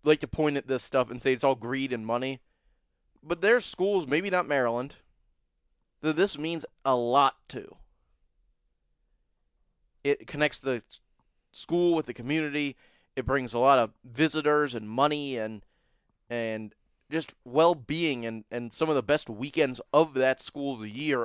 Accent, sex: American, male